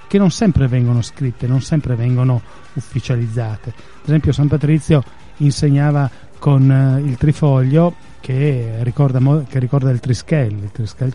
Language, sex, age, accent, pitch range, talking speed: Italian, male, 30-49, native, 130-170 Hz, 145 wpm